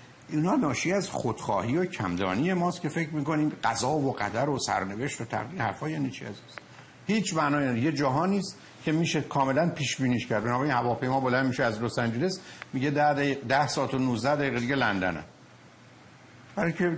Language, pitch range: Persian, 115-150 Hz